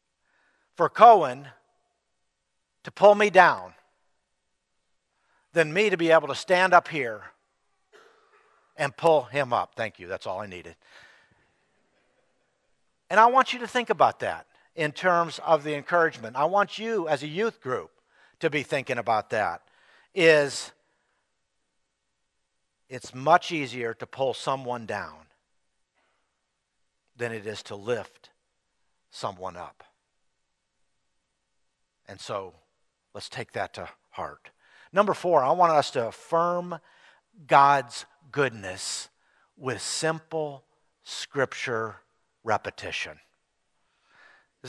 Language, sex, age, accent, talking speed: English, male, 60-79, American, 115 wpm